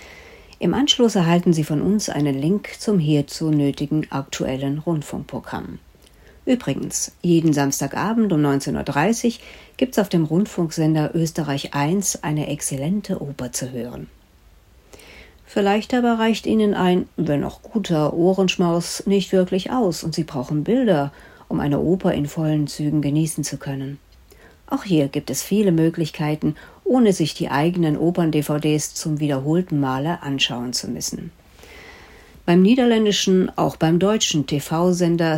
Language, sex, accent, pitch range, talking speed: German, female, German, 150-205 Hz, 130 wpm